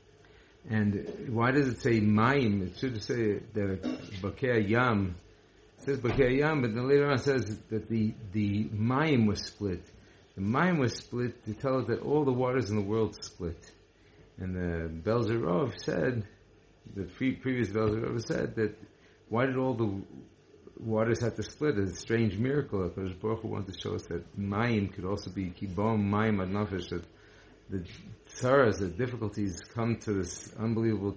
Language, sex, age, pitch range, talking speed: English, male, 50-69, 100-120 Hz, 170 wpm